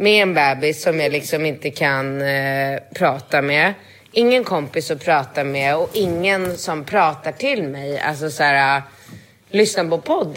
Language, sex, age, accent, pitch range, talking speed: Swedish, female, 30-49, native, 150-215 Hz, 160 wpm